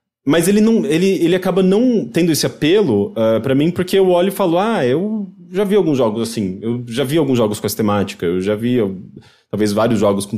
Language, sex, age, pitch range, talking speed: English, male, 30-49, 115-190 Hz, 235 wpm